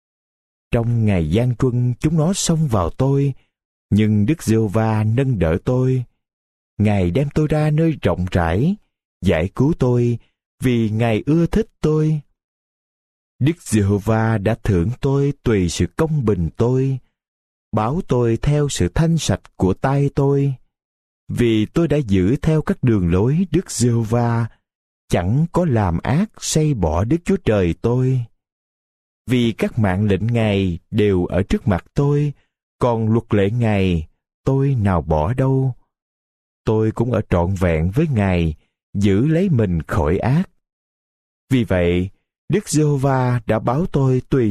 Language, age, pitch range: Vietnamese, 20-39, 90-140 Hz